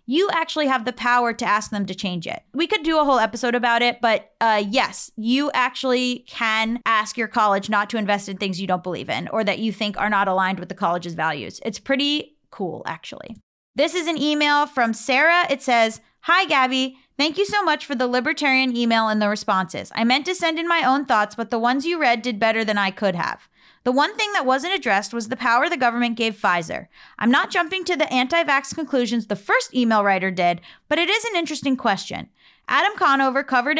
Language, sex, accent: English, female, American